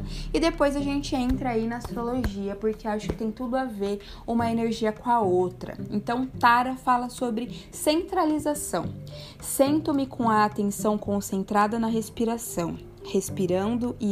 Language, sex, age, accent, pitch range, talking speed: Portuguese, female, 20-39, Brazilian, 195-235 Hz, 145 wpm